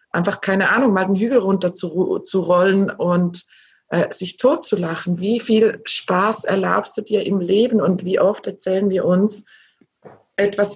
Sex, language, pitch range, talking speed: female, German, 180-210 Hz, 175 wpm